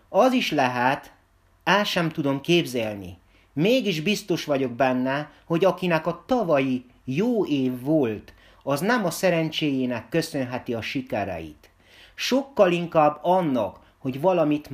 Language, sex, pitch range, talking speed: Hungarian, male, 110-175 Hz, 120 wpm